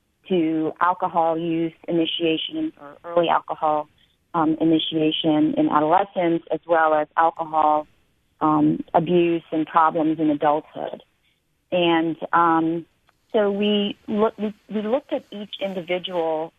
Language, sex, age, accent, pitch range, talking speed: English, female, 40-59, American, 155-185 Hz, 110 wpm